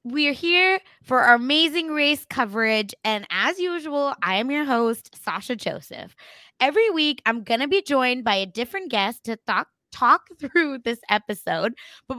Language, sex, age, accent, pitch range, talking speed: English, female, 20-39, American, 215-300 Hz, 165 wpm